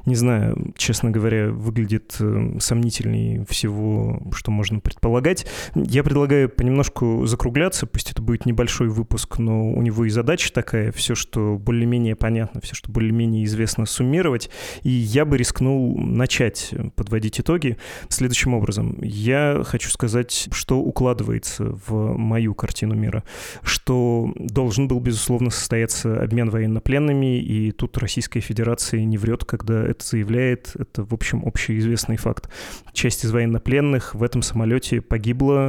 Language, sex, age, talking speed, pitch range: Russian, male, 20-39, 135 wpm, 110-125 Hz